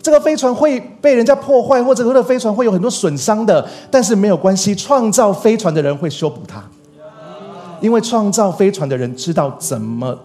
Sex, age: male, 30-49